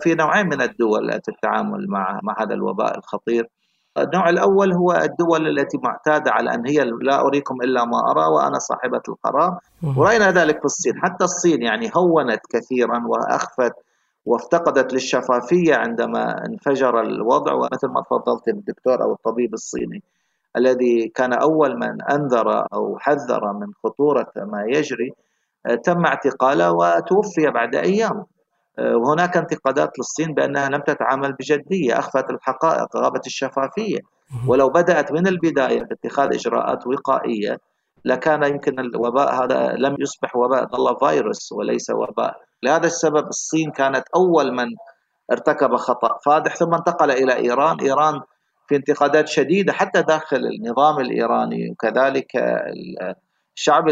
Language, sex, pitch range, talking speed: Arabic, male, 125-165 Hz, 130 wpm